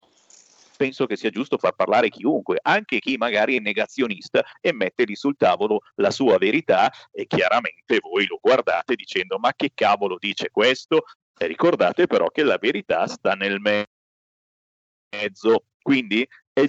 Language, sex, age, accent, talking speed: Italian, male, 40-59, native, 150 wpm